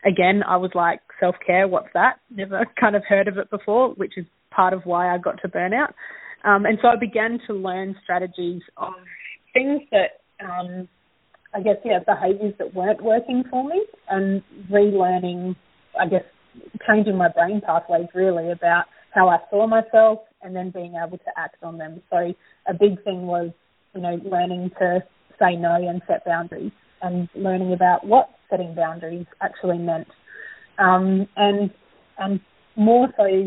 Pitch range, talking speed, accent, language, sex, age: 175-205 Hz, 165 wpm, Australian, English, female, 30-49